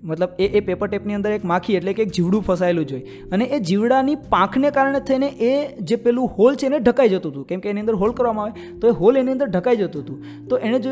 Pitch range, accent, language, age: 175-245 Hz, native, Gujarati, 20-39